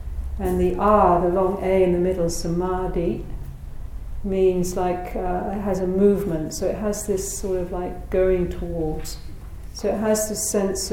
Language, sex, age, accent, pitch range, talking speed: English, female, 50-69, British, 175-200 Hz, 170 wpm